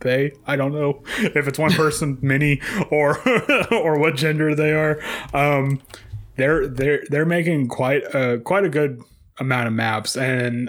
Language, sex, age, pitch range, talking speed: English, male, 20-39, 120-150 Hz, 165 wpm